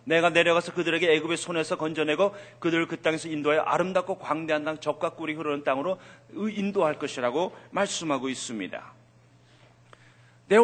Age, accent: 40-59, native